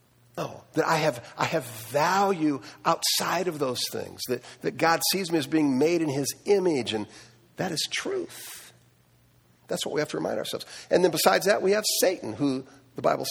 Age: 50-69